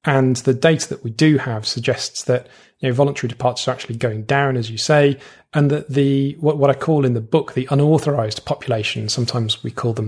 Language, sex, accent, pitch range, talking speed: English, male, British, 120-145 Hz, 220 wpm